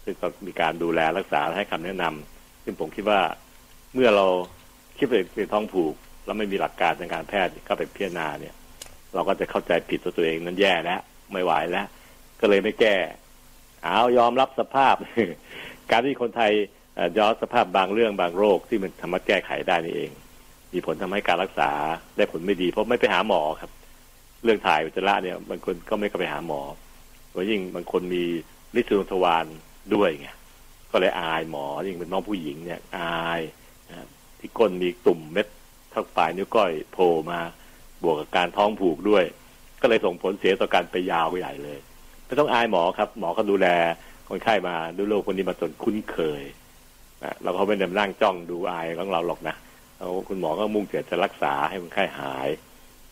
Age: 60-79